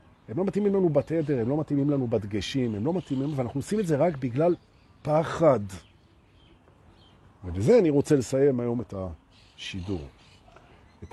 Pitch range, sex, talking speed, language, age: 100-155 Hz, male, 150 wpm, Hebrew, 50-69